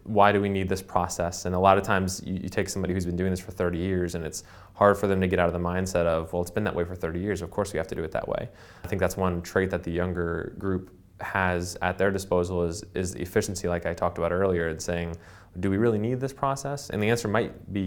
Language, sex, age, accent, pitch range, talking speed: English, male, 20-39, American, 85-95 Hz, 285 wpm